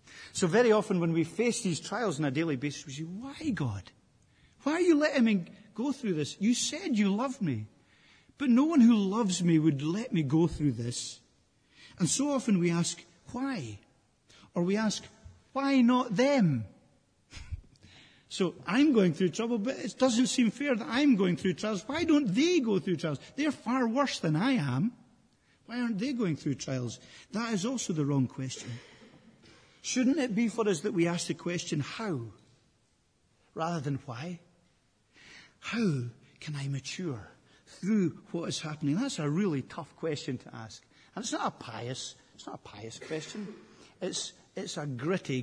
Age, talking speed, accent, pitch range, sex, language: 50-69, 180 wpm, British, 140-220 Hz, male, English